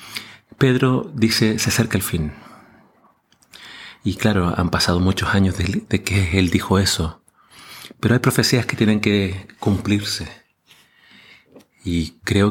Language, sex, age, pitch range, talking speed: Spanish, male, 30-49, 95-115 Hz, 125 wpm